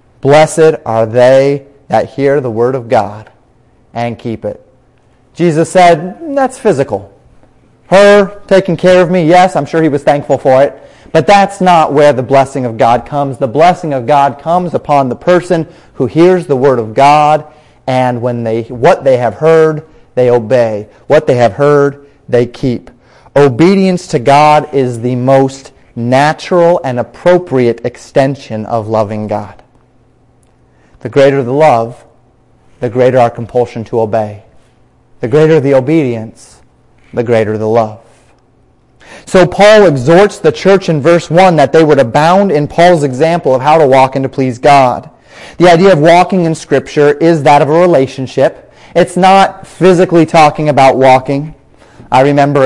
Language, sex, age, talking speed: English, male, 30-49, 160 wpm